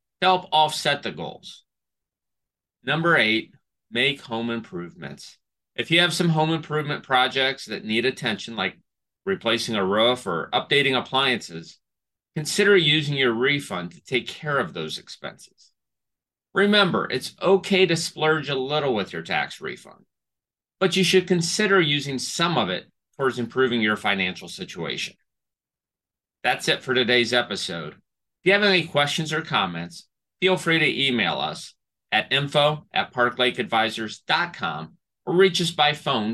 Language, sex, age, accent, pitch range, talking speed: English, male, 40-59, American, 120-170 Hz, 140 wpm